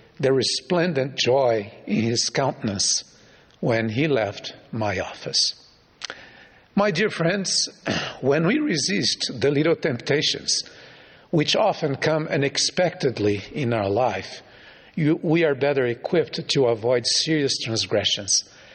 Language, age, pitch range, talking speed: English, 50-69, 120-165 Hz, 110 wpm